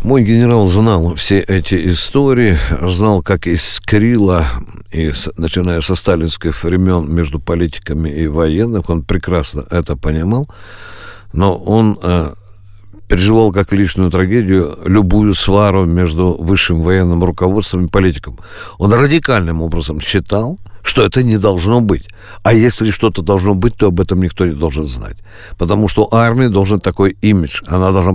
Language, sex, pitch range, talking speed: Russian, male, 85-110 Hz, 140 wpm